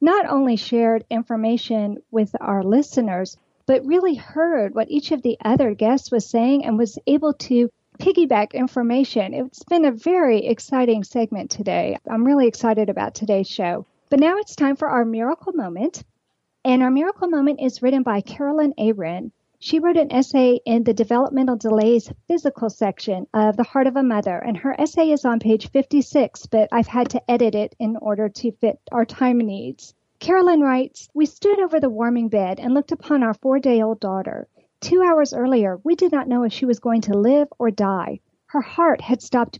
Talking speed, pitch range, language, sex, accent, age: 185 wpm, 225-280 Hz, English, female, American, 50-69